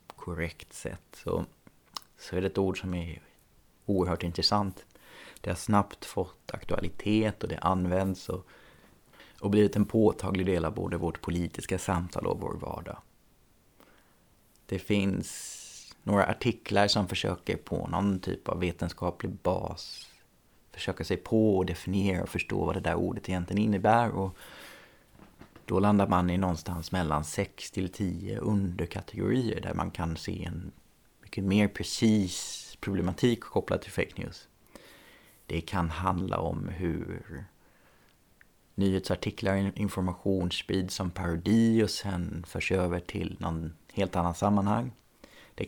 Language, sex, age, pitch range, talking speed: Swedish, male, 30-49, 90-105 Hz, 135 wpm